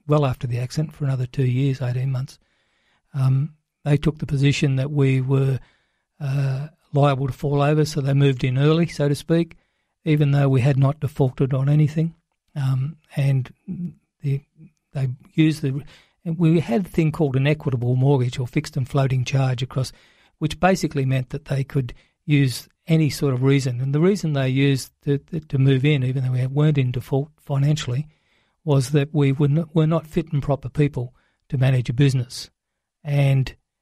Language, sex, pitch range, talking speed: English, male, 130-150 Hz, 185 wpm